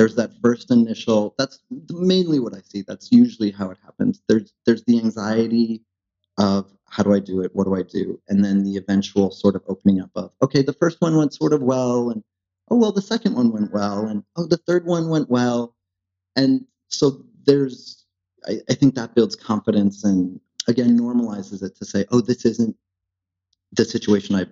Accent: American